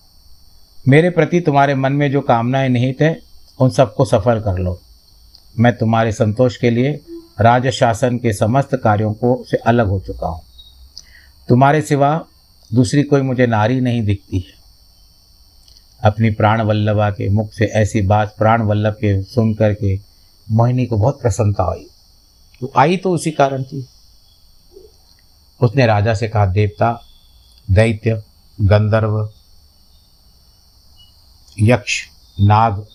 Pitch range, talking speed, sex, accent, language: 95-125 Hz, 130 wpm, male, native, Hindi